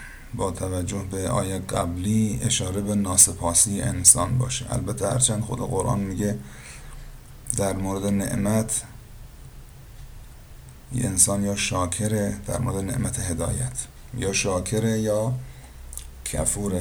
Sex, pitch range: male, 85-115 Hz